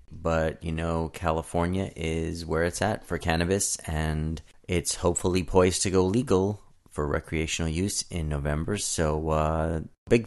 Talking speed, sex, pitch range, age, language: 145 wpm, male, 75-95 Hz, 30-49, English